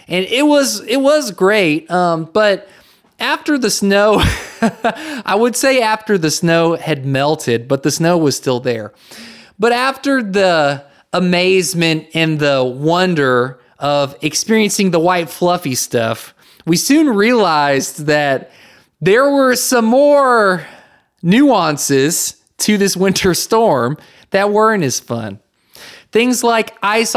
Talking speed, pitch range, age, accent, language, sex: 130 wpm, 150-215 Hz, 20-39, American, English, male